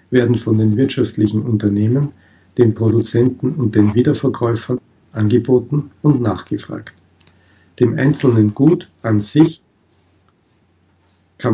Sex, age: male, 50-69